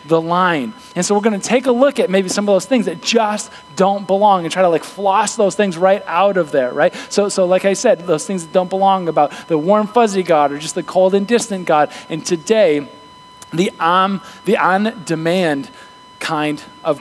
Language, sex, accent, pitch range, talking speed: English, male, American, 195-250 Hz, 220 wpm